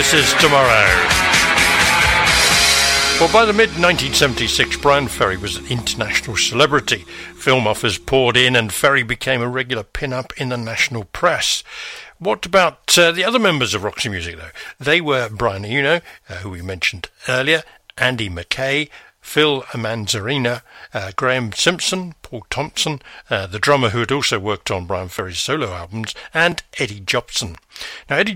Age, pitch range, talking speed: 60-79, 105-145 Hz, 150 wpm